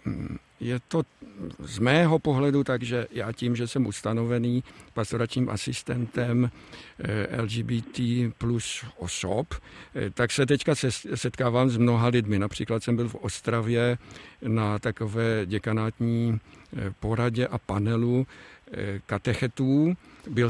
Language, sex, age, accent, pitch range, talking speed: Czech, male, 50-69, native, 115-135 Hz, 105 wpm